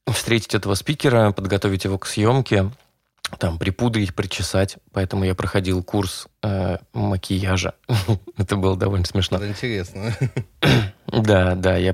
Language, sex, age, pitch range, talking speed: Russian, male, 20-39, 90-105 Hz, 120 wpm